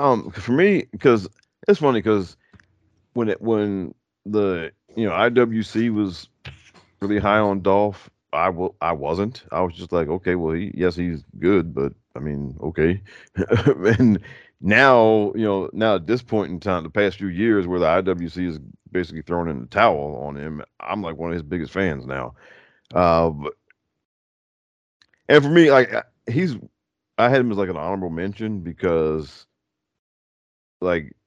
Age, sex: 40-59, male